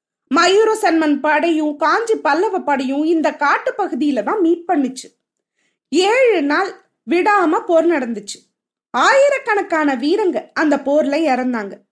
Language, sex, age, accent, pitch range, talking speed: Tamil, female, 20-39, native, 280-370 Hz, 90 wpm